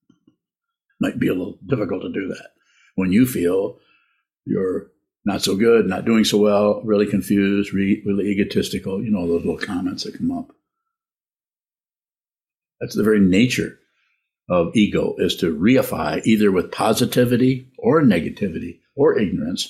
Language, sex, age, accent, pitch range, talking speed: English, male, 60-79, American, 95-125 Hz, 145 wpm